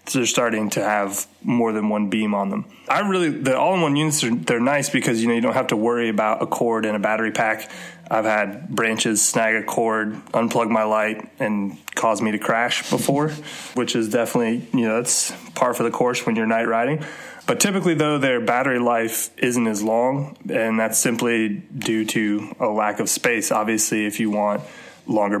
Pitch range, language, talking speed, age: 110-125 Hz, English, 200 wpm, 20-39